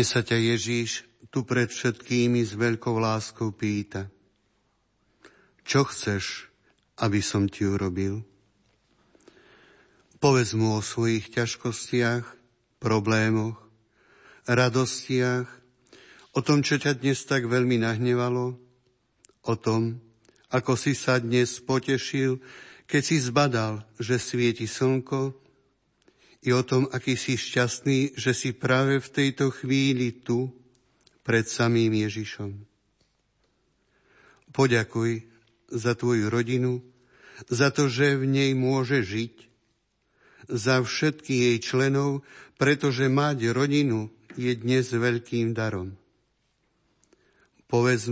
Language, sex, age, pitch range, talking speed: Slovak, male, 60-79, 115-135 Hz, 105 wpm